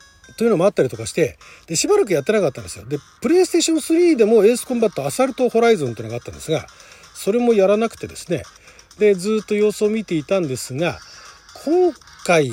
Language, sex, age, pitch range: Japanese, male, 40-59, 155-255 Hz